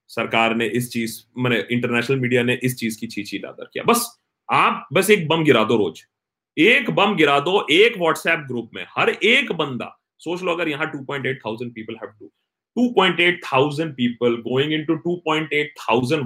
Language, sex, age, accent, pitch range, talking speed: Hindi, male, 30-49, native, 115-150 Hz, 175 wpm